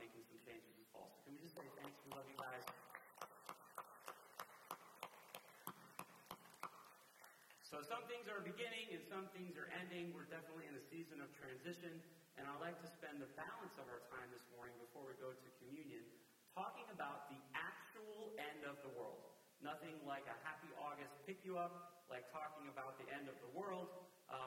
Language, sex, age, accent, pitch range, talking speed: English, male, 40-59, American, 130-175 Hz, 175 wpm